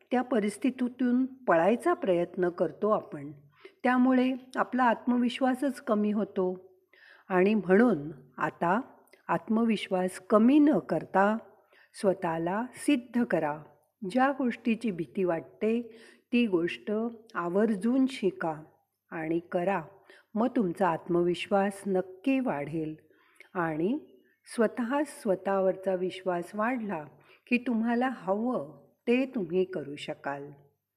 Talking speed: 95 wpm